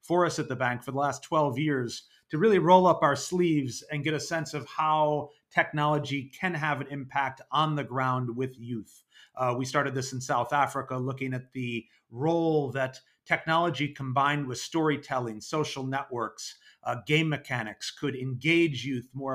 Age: 30-49